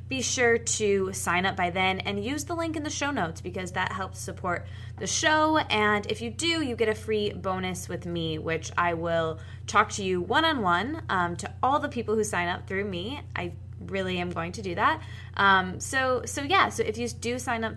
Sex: female